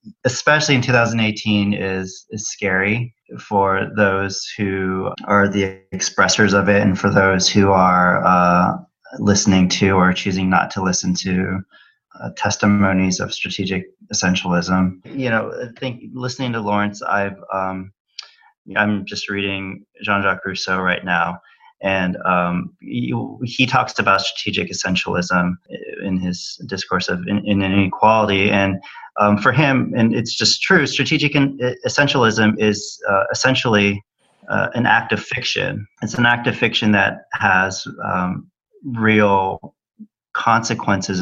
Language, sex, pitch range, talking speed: English, male, 95-115 Hz, 135 wpm